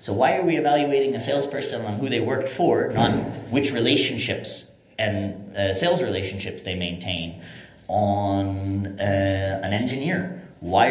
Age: 30-49